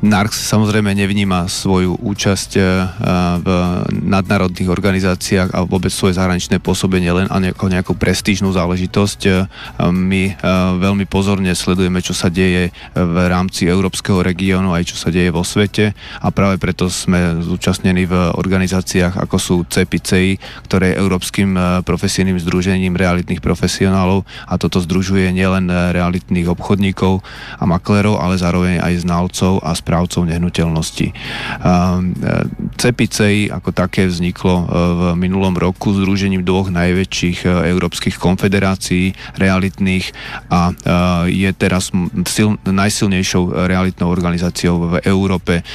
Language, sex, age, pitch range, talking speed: Slovak, male, 30-49, 90-95 Hz, 120 wpm